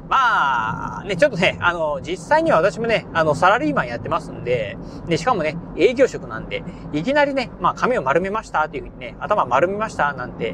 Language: Japanese